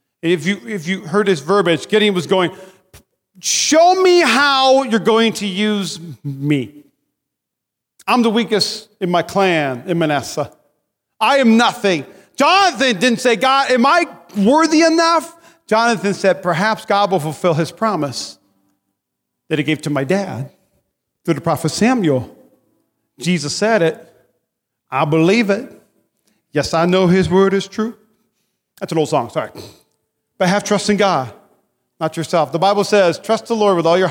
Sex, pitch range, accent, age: male, 165-225 Hz, American, 40-59